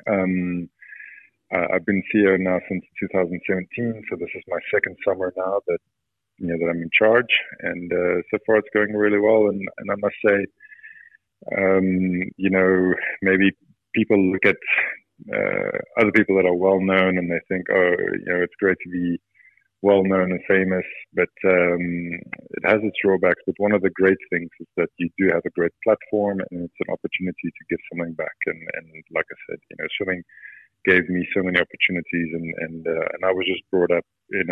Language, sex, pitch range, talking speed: English, male, 85-95 Hz, 195 wpm